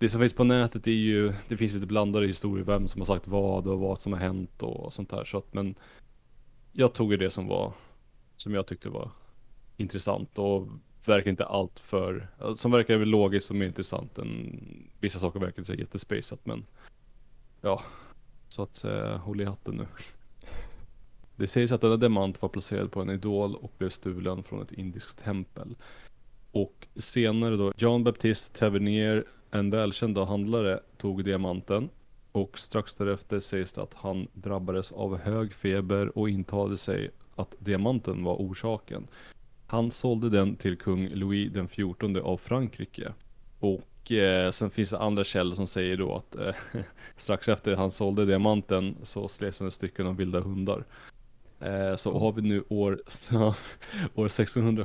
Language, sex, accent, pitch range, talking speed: Swedish, male, Norwegian, 95-110 Hz, 165 wpm